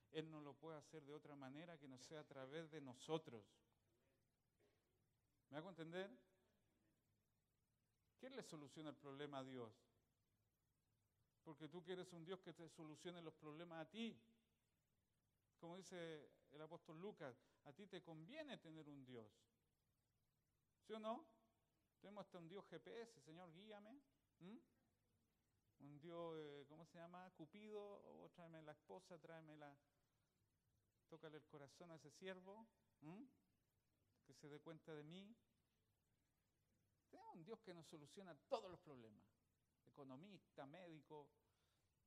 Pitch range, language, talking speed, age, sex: 120-175 Hz, Spanish, 135 wpm, 50-69, male